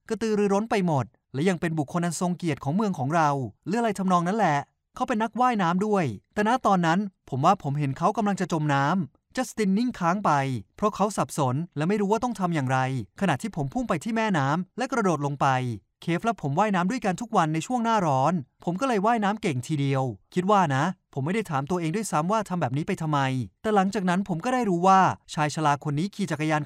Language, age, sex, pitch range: Thai, 20-39, male, 145-210 Hz